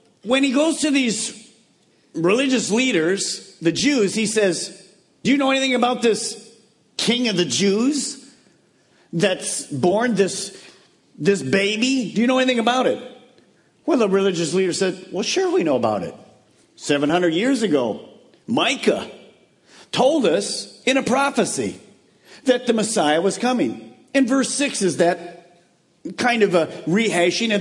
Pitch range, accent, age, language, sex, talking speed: 175-250 Hz, American, 50-69, English, male, 145 wpm